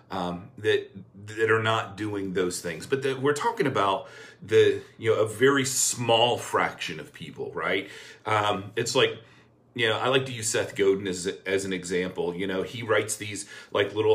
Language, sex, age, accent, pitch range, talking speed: English, male, 40-59, American, 95-135 Hz, 190 wpm